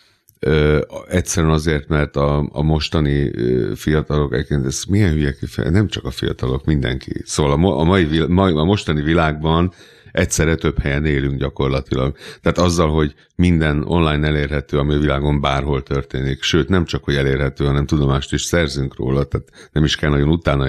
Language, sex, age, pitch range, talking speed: Hungarian, male, 60-79, 70-80 Hz, 160 wpm